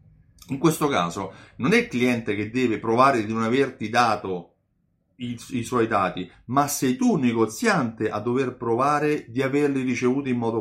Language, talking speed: Italian, 175 wpm